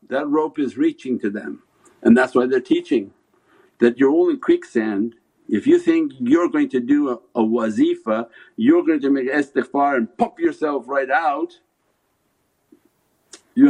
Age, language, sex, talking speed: 60-79, English, male, 160 wpm